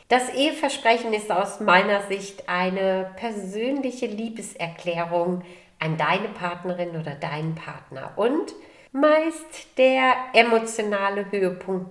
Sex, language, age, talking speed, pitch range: female, German, 40-59, 100 wpm, 170-220 Hz